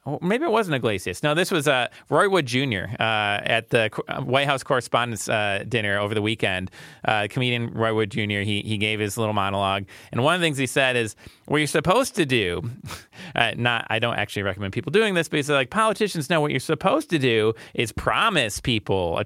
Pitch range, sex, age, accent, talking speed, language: 110-155 Hz, male, 30-49, American, 225 wpm, English